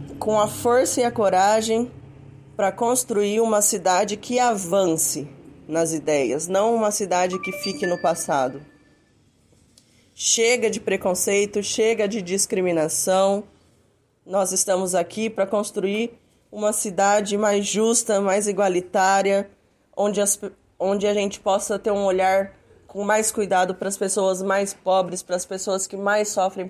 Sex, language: female, Portuguese